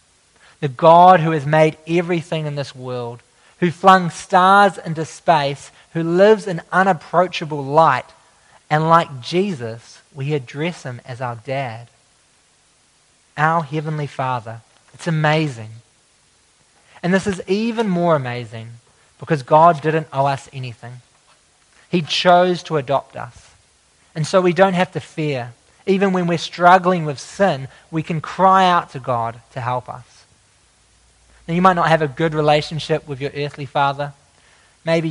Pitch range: 135-170 Hz